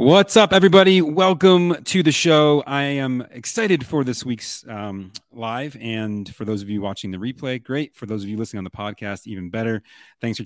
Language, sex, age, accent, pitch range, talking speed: English, male, 30-49, American, 100-130 Hz, 205 wpm